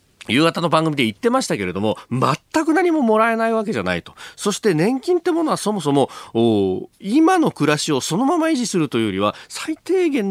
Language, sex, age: Japanese, male, 40-59